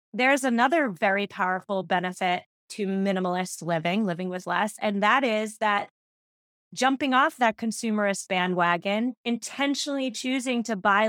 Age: 20-39